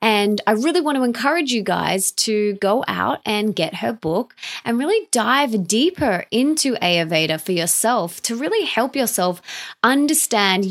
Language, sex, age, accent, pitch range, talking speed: English, female, 20-39, Australian, 190-265 Hz, 155 wpm